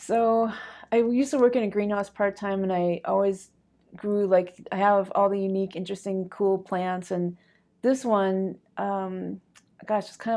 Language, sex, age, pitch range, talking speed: English, female, 30-49, 185-210 Hz, 170 wpm